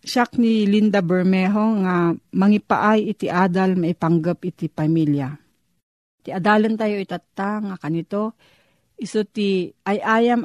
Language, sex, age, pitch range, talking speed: Filipino, female, 40-59, 170-215 Hz, 125 wpm